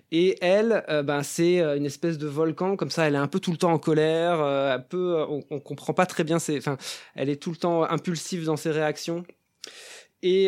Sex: male